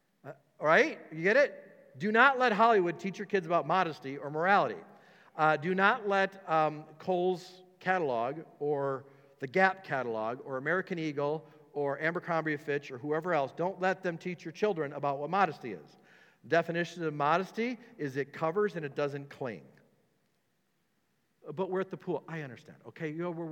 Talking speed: 175 wpm